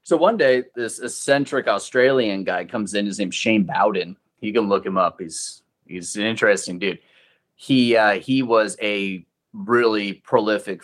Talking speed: 165 wpm